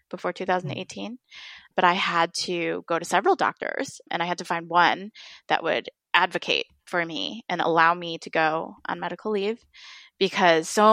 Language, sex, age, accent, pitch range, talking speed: English, female, 20-39, American, 165-195 Hz, 170 wpm